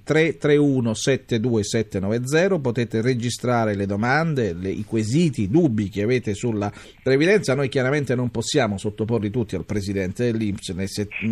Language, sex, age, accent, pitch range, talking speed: Italian, male, 40-59, native, 105-140 Hz, 135 wpm